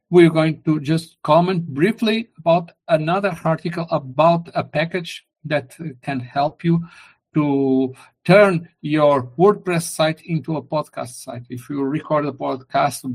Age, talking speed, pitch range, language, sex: 50-69, 135 wpm, 130-160 Hz, English, male